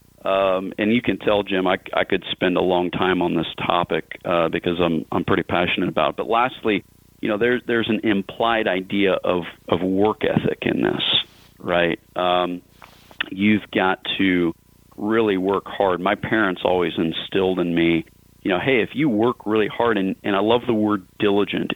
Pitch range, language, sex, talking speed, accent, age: 90-110 Hz, English, male, 190 wpm, American, 40-59